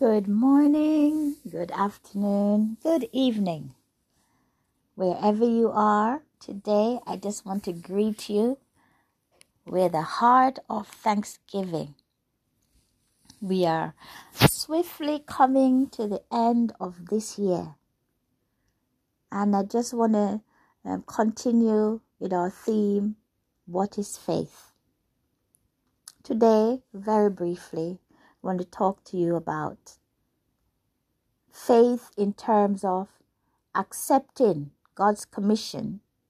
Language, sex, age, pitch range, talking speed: English, female, 60-79, 180-230 Hz, 100 wpm